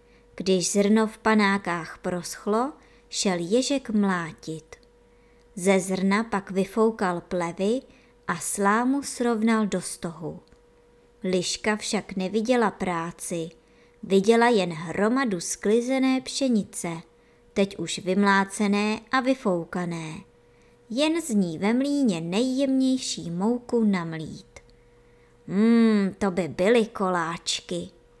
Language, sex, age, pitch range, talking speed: Czech, male, 20-39, 180-240 Hz, 95 wpm